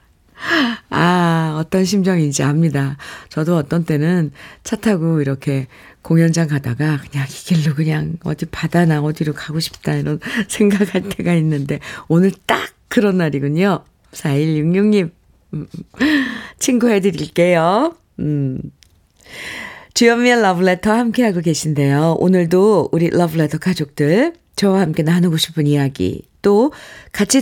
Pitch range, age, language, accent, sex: 150-215 Hz, 50-69, Korean, native, female